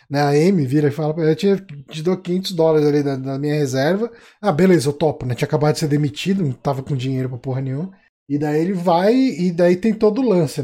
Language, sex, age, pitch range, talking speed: Portuguese, male, 20-39, 150-210 Hz, 245 wpm